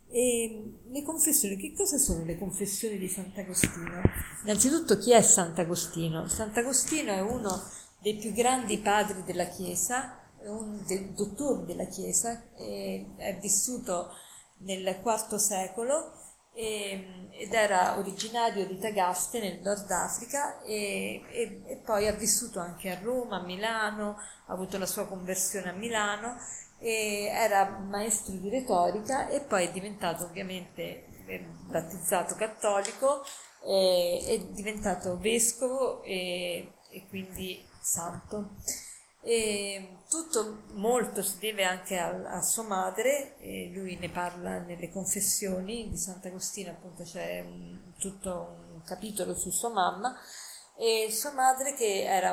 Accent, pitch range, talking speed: native, 185-225 Hz, 125 wpm